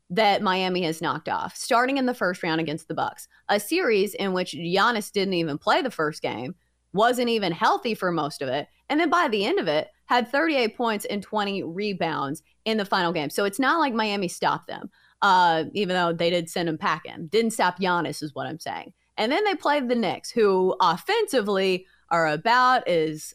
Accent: American